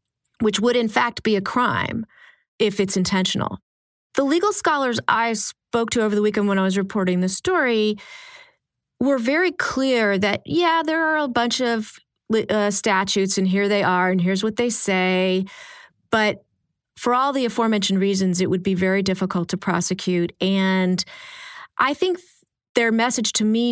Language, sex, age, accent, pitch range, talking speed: English, female, 30-49, American, 185-235 Hz, 165 wpm